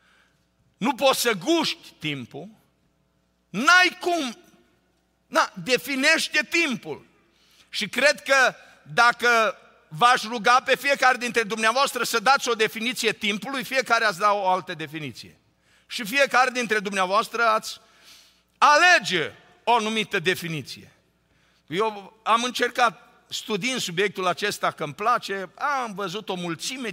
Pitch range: 185-260 Hz